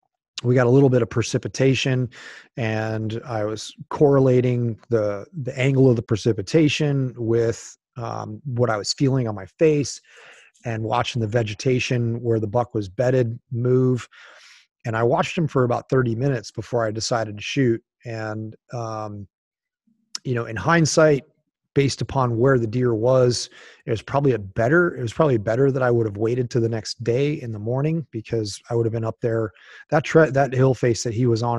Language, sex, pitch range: English, male, 110-130 Hz